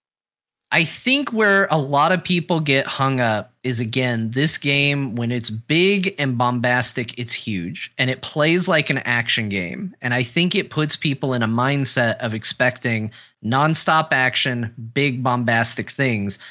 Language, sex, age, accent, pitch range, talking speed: English, male, 30-49, American, 125-160 Hz, 160 wpm